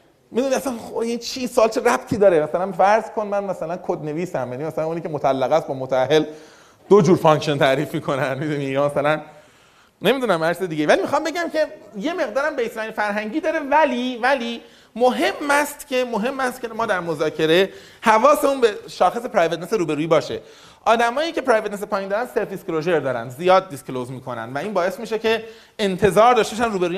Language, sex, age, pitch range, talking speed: Persian, male, 30-49, 155-235 Hz, 180 wpm